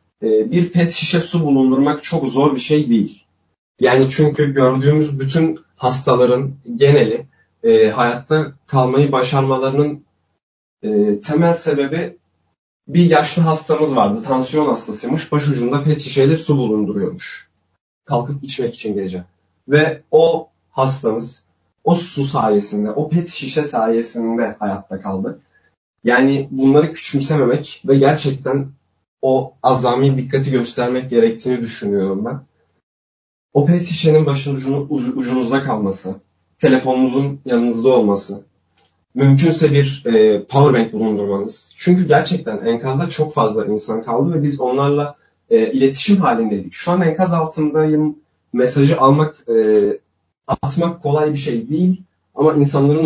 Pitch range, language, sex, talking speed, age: 120-155 Hz, Turkish, male, 120 wpm, 30-49